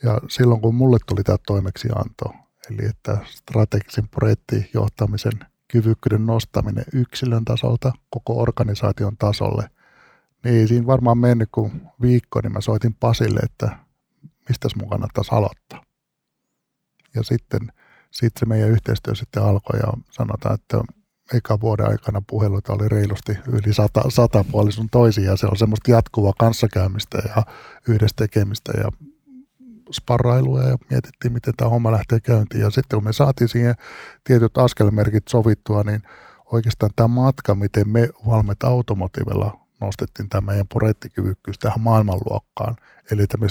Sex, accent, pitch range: male, native, 105-120 Hz